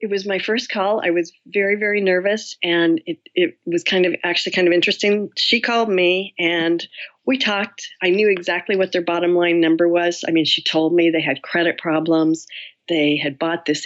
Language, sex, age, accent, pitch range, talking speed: English, female, 40-59, American, 160-200 Hz, 210 wpm